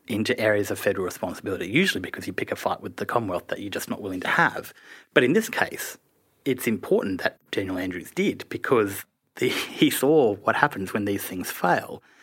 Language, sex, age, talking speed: English, male, 30-49, 200 wpm